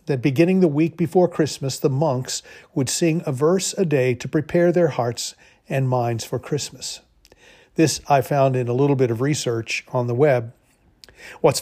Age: 50-69